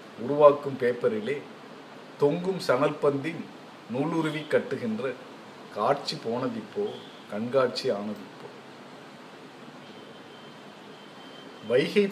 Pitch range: 140-205 Hz